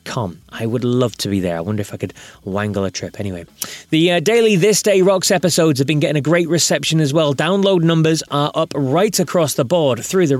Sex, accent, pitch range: male, British, 110-160 Hz